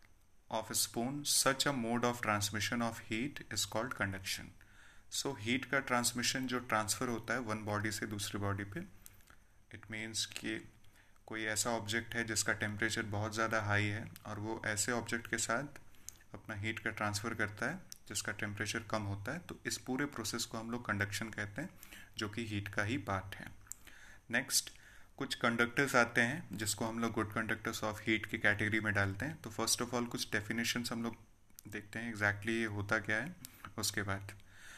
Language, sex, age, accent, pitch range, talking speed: Hindi, male, 30-49, native, 105-120 Hz, 190 wpm